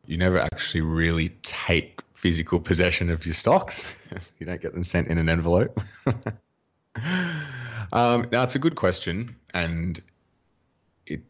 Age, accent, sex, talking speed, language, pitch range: 20-39, Australian, male, 140 wpm, English, 75-85 Hz